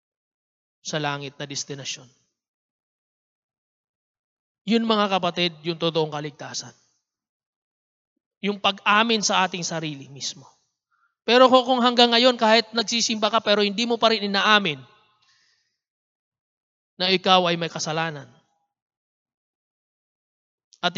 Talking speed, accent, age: 100 wpm, Filipino, 20-39